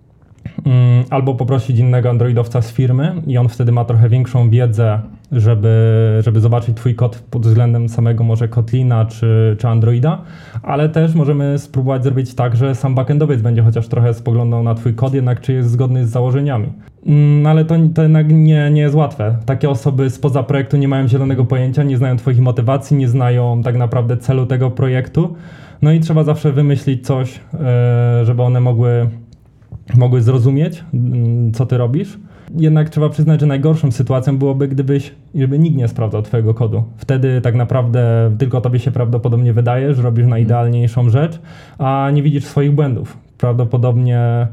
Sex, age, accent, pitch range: male, 20-39, native, 120-140 Hz